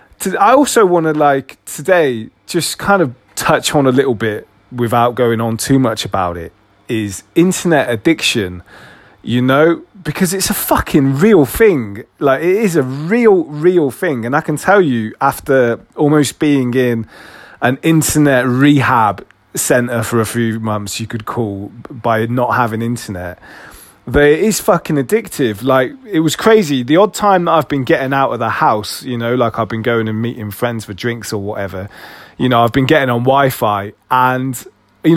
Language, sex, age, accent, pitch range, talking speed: English, male, 20-39, British, 105-140 Hz, 180 wpm